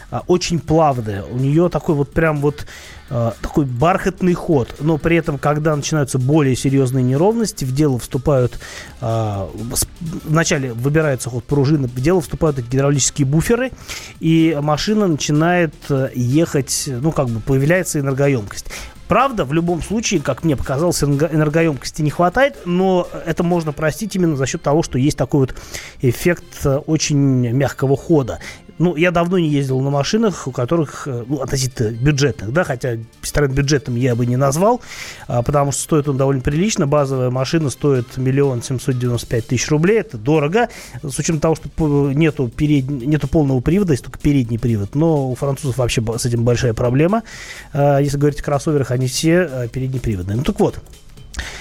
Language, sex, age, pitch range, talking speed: Russian, male, 30-49, 130-165 Hz, 155 wpm